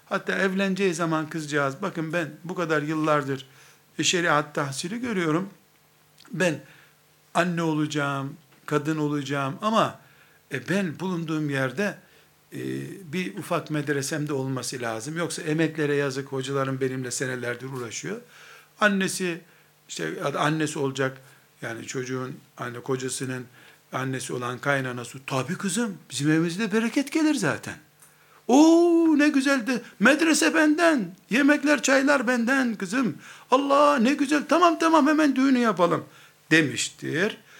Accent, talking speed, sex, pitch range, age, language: native, 115 wpm, male, 140-200 Hz, 60-79, Turkish